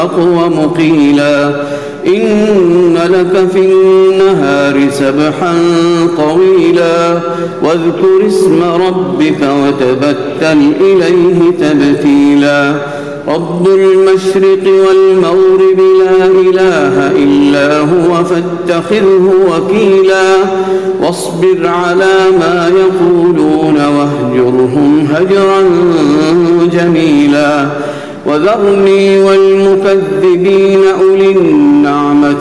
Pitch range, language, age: 155-195 Hz, Arabic, 50-69